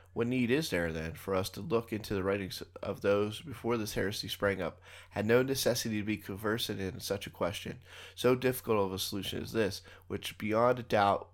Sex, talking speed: male, 210 wpm